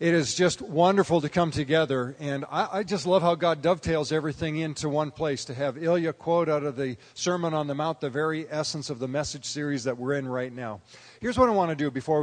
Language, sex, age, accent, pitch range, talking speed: English, male, 40-59, American, 135-170 Hz, 240 wpm